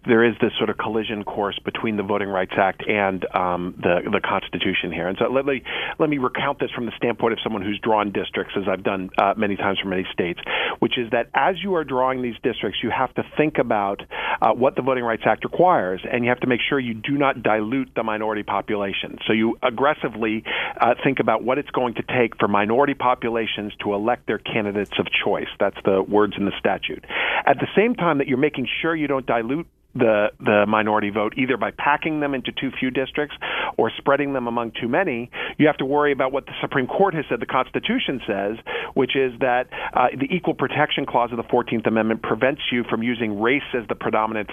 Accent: American